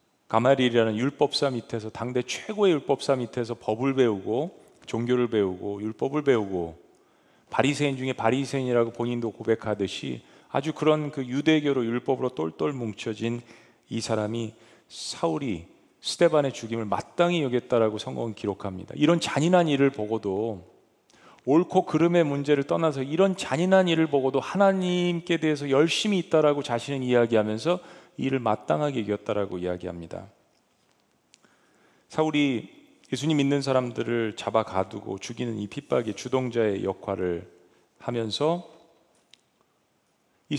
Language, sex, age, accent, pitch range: Korean, male, 40-59, native, 115-155 Hz